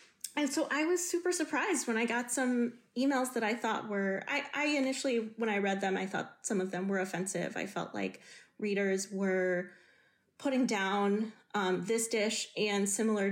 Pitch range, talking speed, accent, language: 195-235 Hz, 185 wpm, American, English